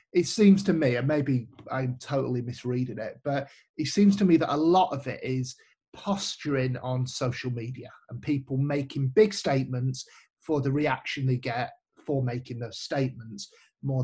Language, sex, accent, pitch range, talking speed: English, male, British, 130-185 Hz, 170 wpm